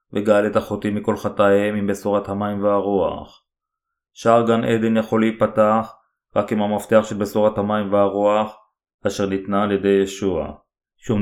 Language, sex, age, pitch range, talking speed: Hebrew, male, 30-49, 100-115 Hz, 135 wpm